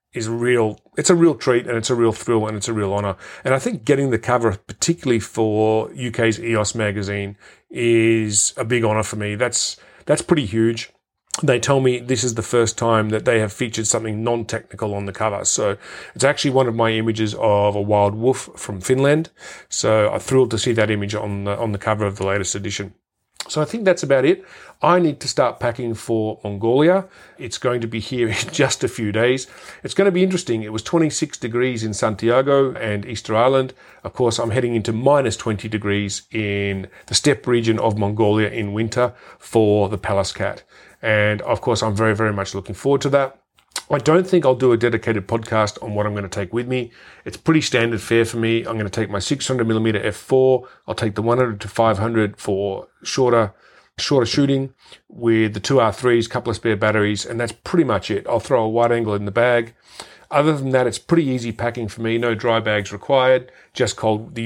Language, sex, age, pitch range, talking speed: English, male, 40-59, 105-125 Hz, 210 wpm